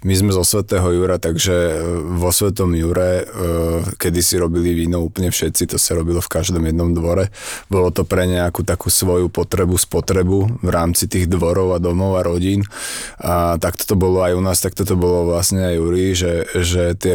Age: 20-39